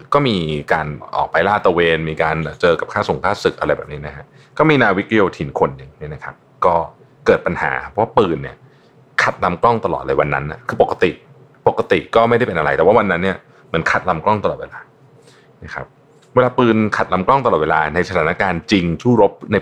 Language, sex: Thai, male